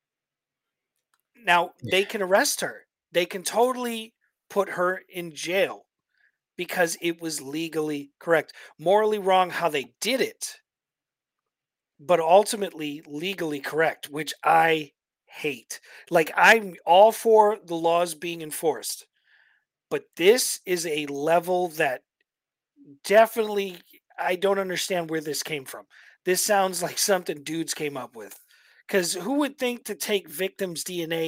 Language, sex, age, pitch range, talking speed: English, male, 30-49, 165-230 Hz, 130 wpm